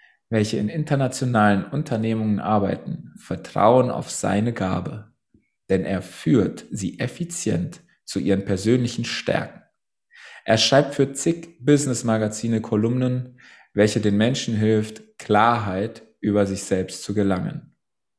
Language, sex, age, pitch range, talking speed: German, male, 20-39, 100-120 Hz, 110 wpm